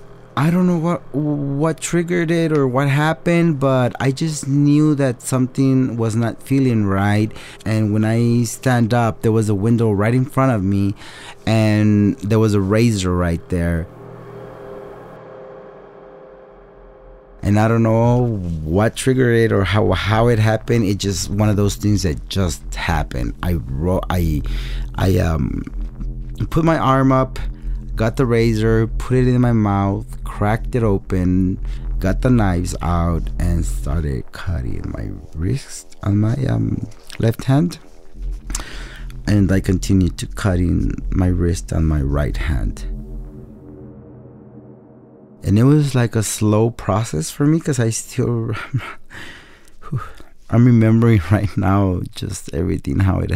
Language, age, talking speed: English, 30-49, 145 wpm